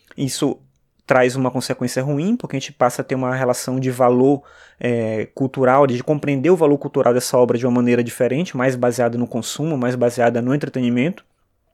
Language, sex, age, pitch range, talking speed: Portuguese, male, 20-39, 130-160 Hz, 185 wpm